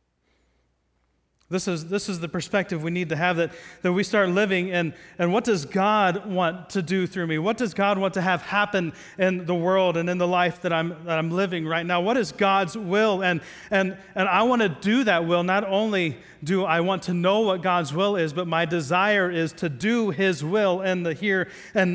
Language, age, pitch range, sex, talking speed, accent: English, 40-59, 145-190 Hz, male, 225 wpm, American